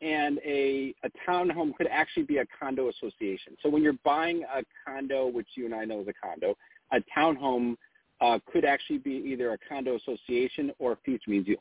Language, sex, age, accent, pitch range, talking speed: English, male, 40-59, American, 120-165 Hz, 200 wpm